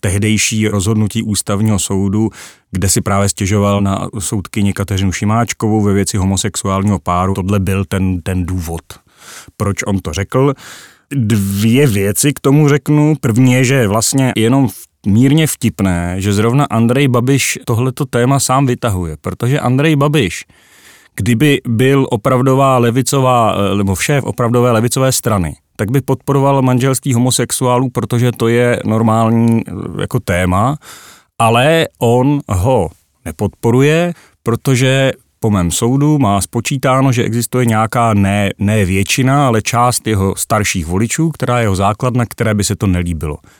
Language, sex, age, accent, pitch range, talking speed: Czech, male, 40-59, native, 100-130 Hz, 130 wpm